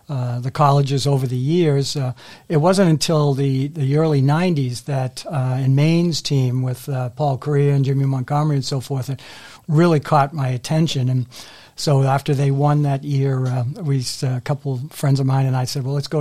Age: 60-79